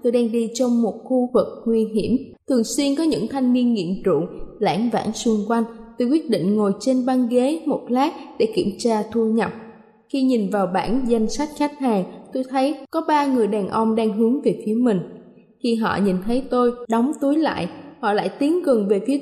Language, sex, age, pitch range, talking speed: Vietnamese, female, 20-39, 215-270 Hz, 215 wpm